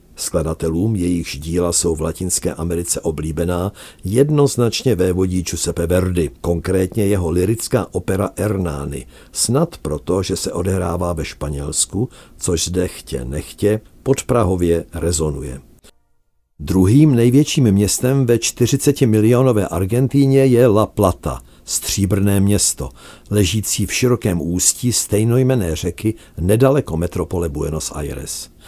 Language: Czech